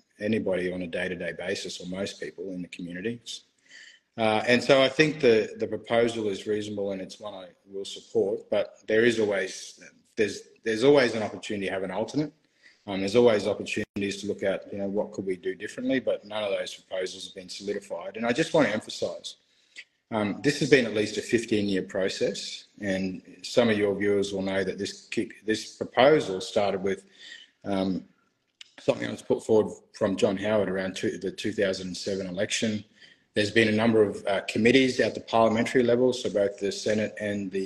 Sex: male